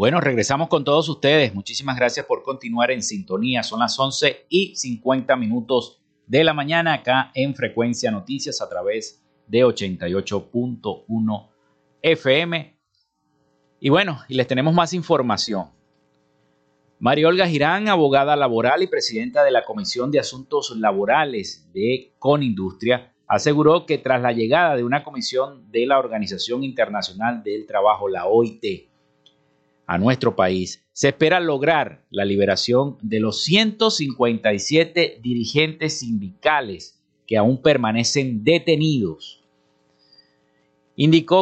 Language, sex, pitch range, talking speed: Spanish, male, 110-160 Hz, 120 wpm